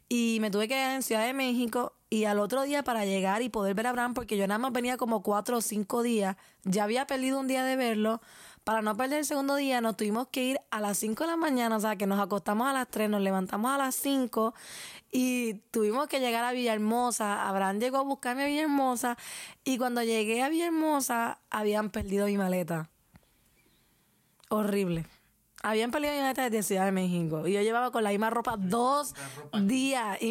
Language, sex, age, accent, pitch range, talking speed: Spanish, female, 20-39, American, 205-245 Hz, 210 wpm